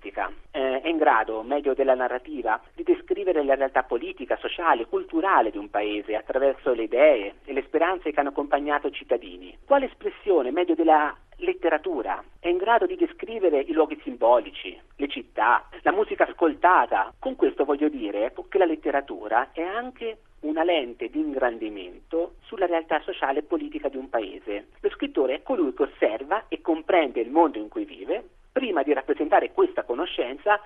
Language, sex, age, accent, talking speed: Italian, male, 50-69, native, 170 wpm